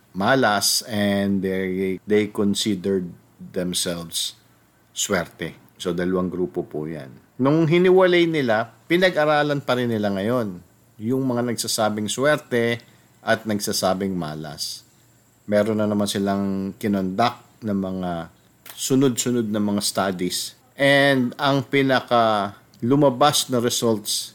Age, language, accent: 50-69, English, Filipino